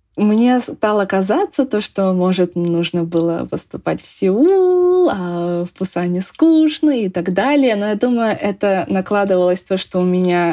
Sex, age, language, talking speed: female, 20-39, Russian, 155 wpm